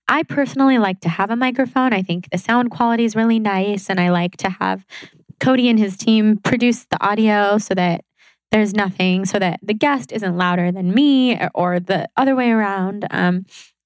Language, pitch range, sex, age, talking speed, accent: English, 185-240 Hz, female, 20-39, 195 wpm, American